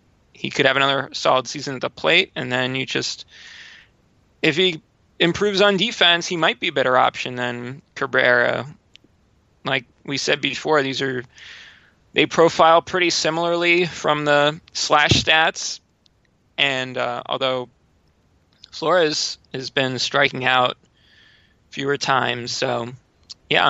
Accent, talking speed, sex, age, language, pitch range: American, 130 wpm, male, 20-39, English, 125-165 Hz